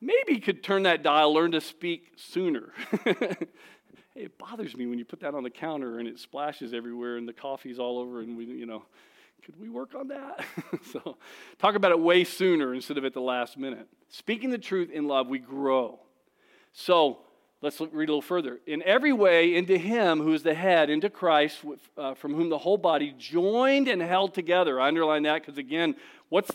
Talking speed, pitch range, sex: 210 wpm, 135-210 Hz, male